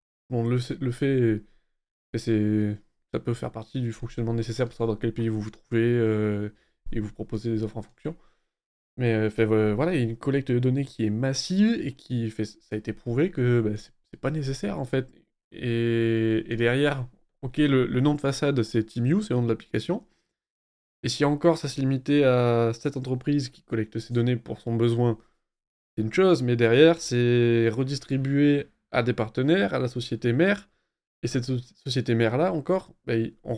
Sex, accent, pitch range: male, French, 110-135 Hz